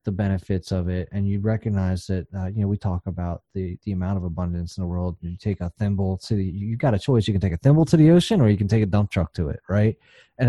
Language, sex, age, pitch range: English, male, 30-49, 95-115 Hz